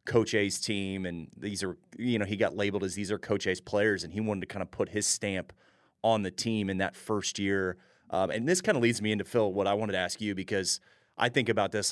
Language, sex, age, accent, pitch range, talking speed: English, male, 30-49, American, 95-115 Hz, 265 wpm